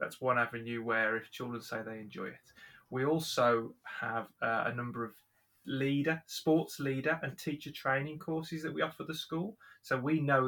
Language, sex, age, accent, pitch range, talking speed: English, male, 20-39, British, 115-135 Hz, 185 wpm